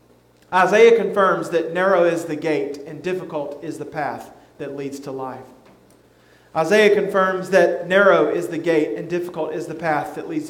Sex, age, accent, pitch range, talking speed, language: male, 40-59, American, 170-225 Hz, 170 wpm, English